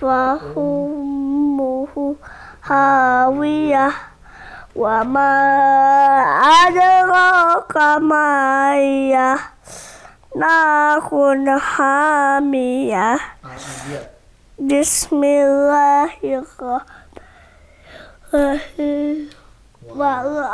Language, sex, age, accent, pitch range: Indonesian, female, 20-39, American, 275-325 Hz